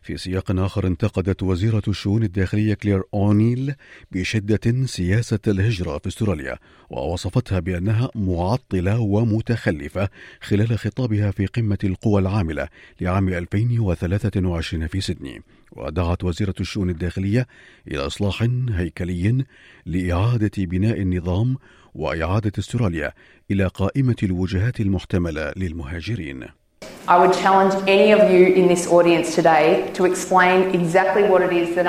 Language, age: Arabic, 50-69